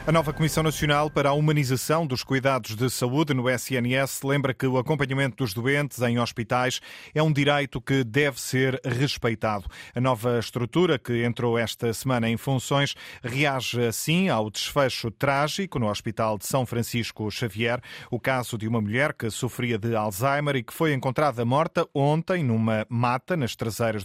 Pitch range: 115-140 Hz